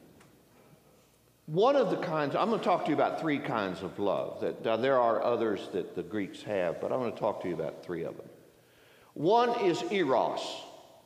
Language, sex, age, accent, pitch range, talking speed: English, male, 60-79, American, 135-195 Hz, 195 wpm